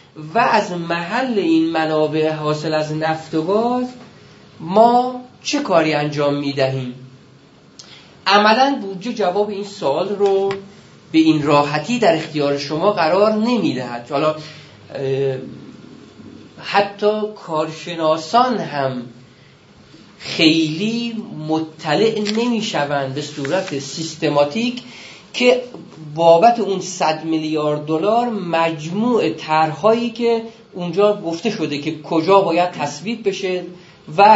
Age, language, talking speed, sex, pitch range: 40-59, Persian, 100 wpm, male, 155-225 Hz